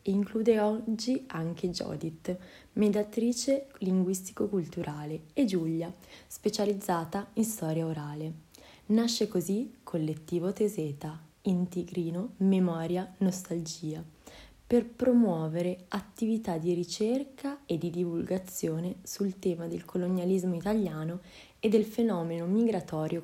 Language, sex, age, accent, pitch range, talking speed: Italian, female, 20-39, native, 170-210 Hz, 95 wpm